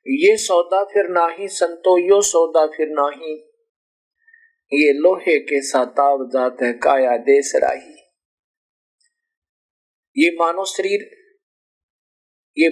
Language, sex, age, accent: Hindi, male, 50-69, native